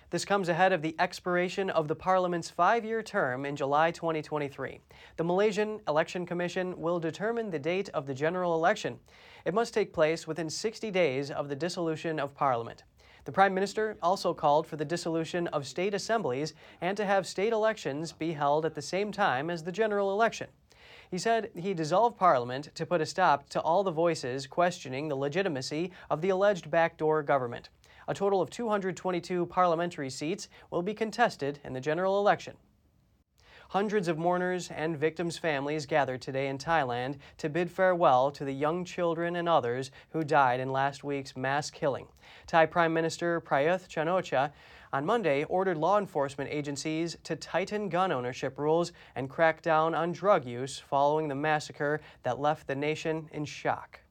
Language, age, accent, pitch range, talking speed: English, 30-49, American, 150-185 Hz, 170 wpm